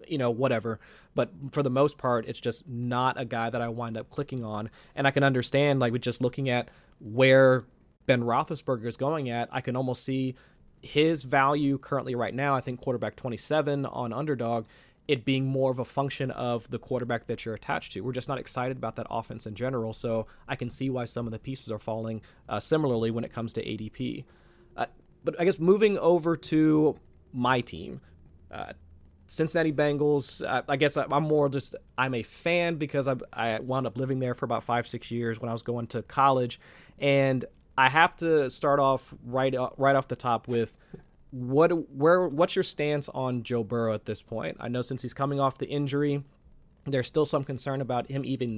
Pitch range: 120-140 Hz